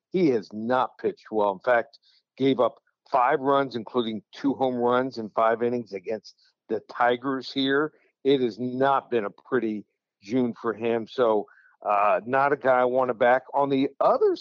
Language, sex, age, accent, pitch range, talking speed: English, male, 60-79, American, 125-150 Hz, 180 wpm